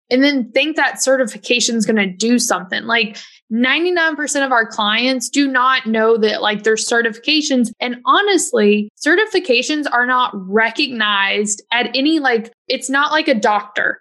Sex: female